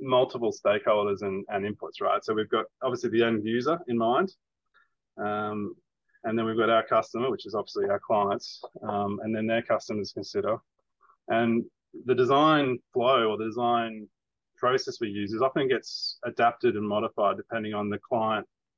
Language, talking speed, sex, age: English, 170 wpm, male, 20-39